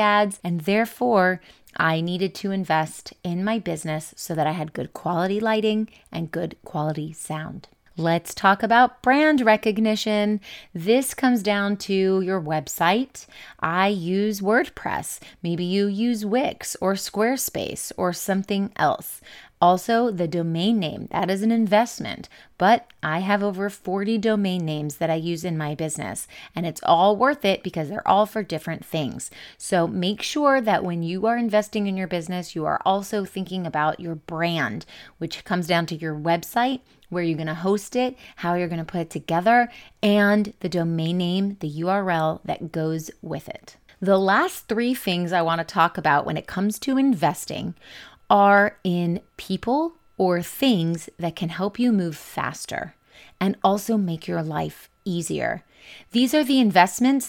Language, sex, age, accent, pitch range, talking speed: English, female, 30-49, American, 170-220 Hz, 165 wpm